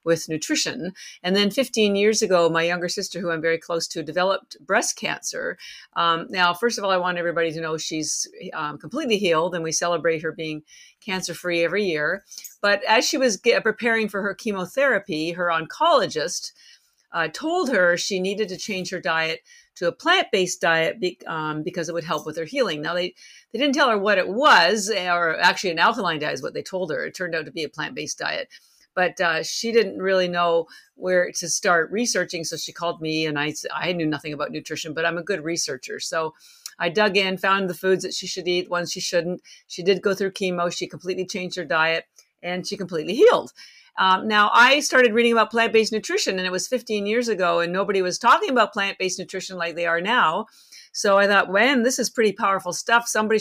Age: 50-69